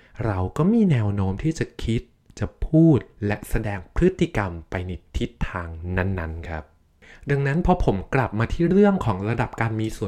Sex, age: male, 20-39